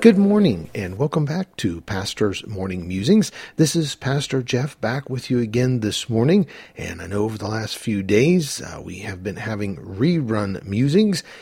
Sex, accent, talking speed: male, American, 180 wpm